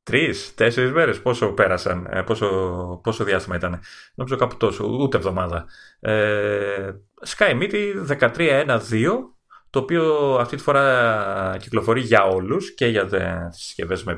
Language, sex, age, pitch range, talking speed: Greek, male, 30-49, 95-125 Hz, 125 wpm